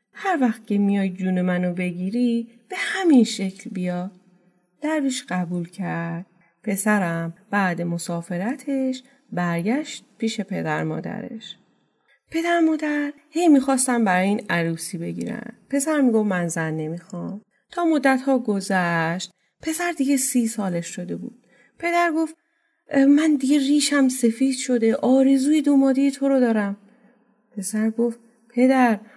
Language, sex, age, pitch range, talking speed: Persian, female, 30-49, 195-275 Hz, 120 wpm